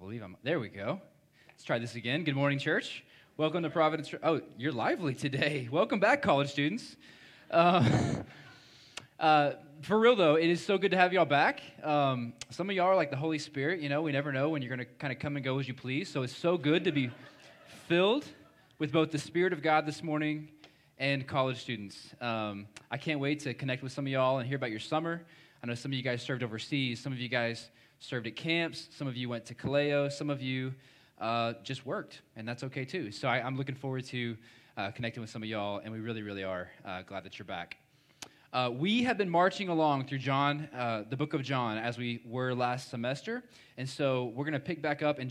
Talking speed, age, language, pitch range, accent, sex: 230 wpm, 20-39, English, 120-150 Hz, American, male